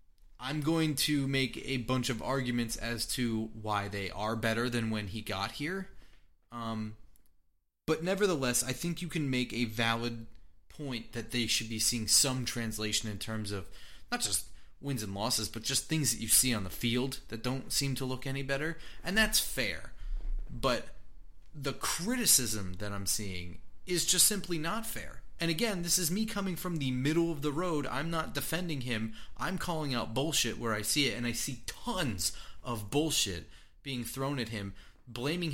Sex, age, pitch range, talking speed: male, 30-49, 110-155 Hz, 185 wpm